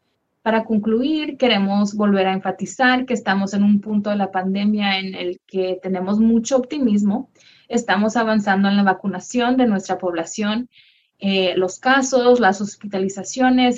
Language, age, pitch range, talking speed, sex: English, 20-39, 190-230 Hz, 145 wpm, female